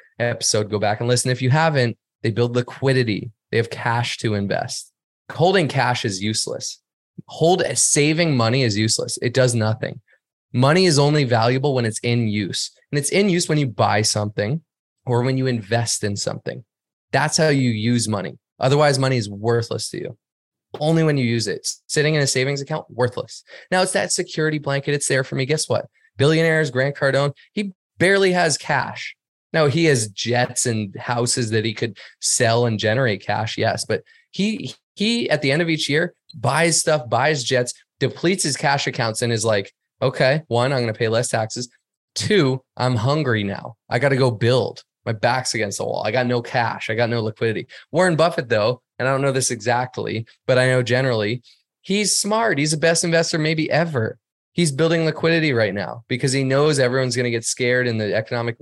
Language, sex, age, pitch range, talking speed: English, male, 20-39, 115-155 Hz, 195 wpm